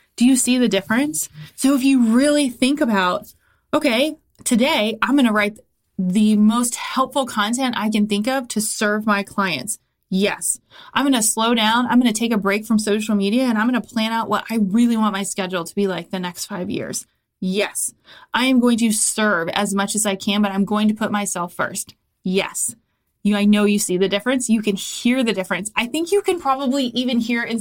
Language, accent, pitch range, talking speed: English, American, 200-240 Hz, 225 wpm